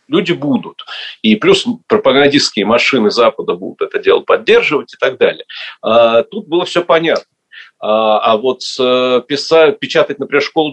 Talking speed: 135 wpm